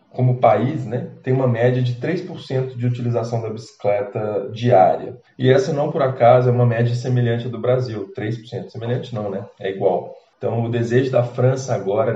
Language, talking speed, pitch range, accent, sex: Portuguese, 185 wpm, 115-125 Hz, Brazilian, male